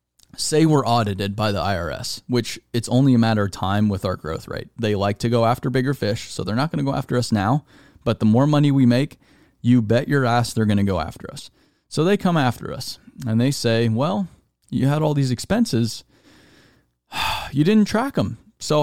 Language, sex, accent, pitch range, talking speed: English, male, American, 110-145 Hz, 215 wpm